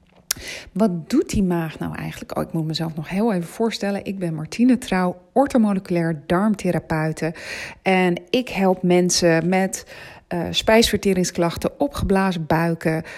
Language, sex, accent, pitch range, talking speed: Dutch, female, Dutch, 165-220 Hz, 130 wpm